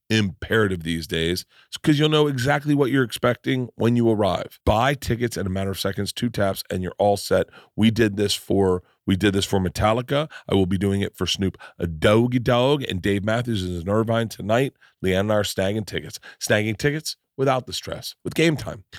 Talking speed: 205 wpm